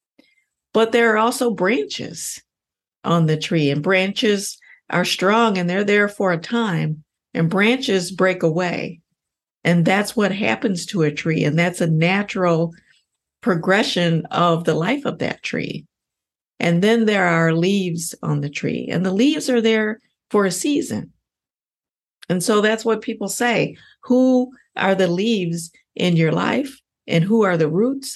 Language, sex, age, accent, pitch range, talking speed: English, female, 50-69, American, 165-220 Hz, 160 wpm